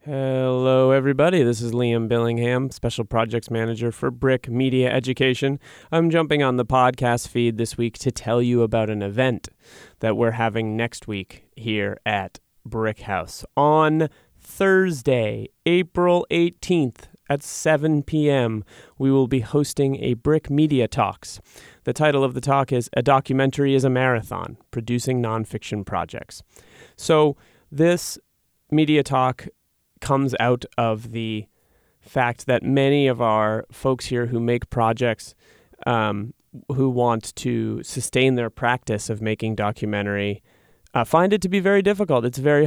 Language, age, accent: English, 30-49, American